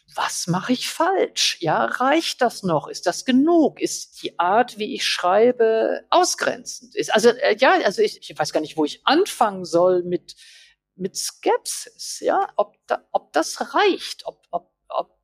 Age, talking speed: 50-69, 175 wpm